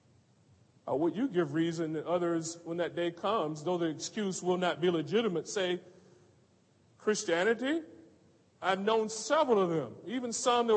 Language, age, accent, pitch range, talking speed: English, 40-59, American, 115-165 Hz, 150 wpm